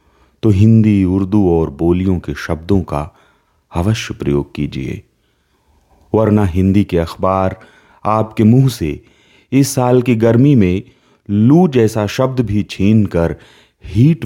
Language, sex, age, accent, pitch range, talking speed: Hindi, male, 30-49, native, 80-115 Hz, 125 wpm